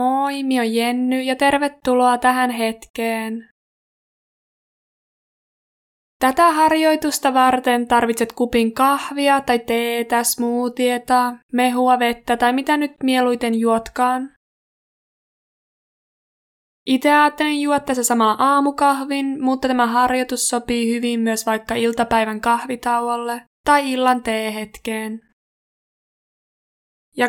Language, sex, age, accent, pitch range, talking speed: Finnish, female, 20-39, native, 235-265 Hz, 90 wpm